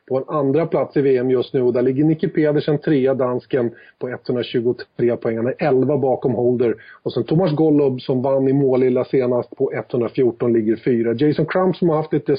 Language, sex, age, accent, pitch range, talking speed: Swedish, male, 30-49, native, 125-150 Hz, 200 wpm